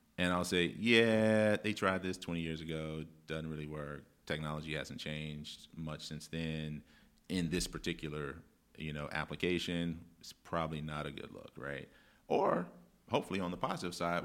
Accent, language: American, English